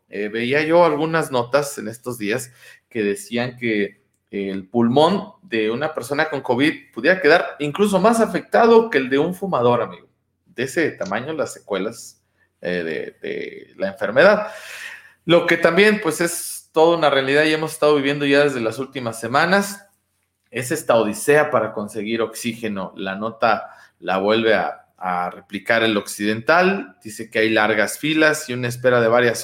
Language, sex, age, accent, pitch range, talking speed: Spanish, male, 40-59, Mexican, 115-155 Hz, 165 wpm